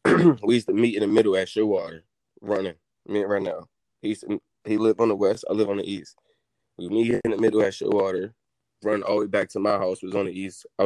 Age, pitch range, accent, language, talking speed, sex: 20-39, 100-110 Hz, American, English, 265 wpm, male